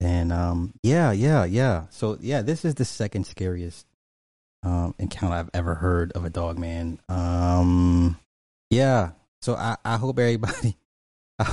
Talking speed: 150 wpm